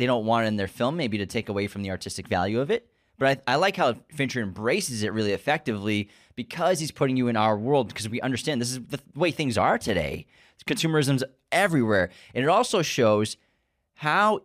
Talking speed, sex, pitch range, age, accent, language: 210 wpm, male, 110-145 Hz, 20-39, American, English